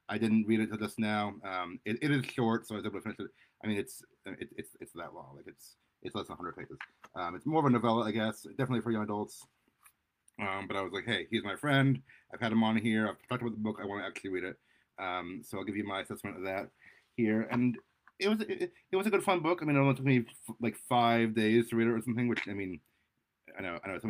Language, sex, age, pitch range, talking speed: English, male, 30-49, 95-115 Hz, 285 wpm